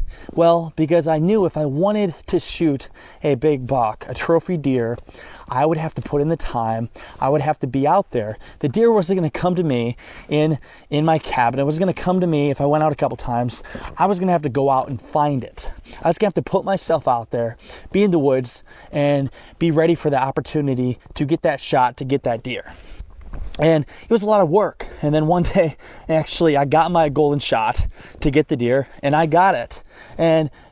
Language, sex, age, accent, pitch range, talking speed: English, male, 20-39, American, 130-165 Hz, 235 wpm